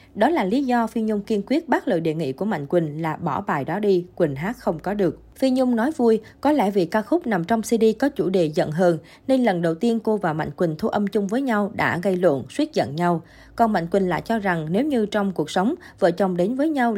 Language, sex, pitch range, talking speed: Vietnamese, female, 175-235 Hz, 270 wpm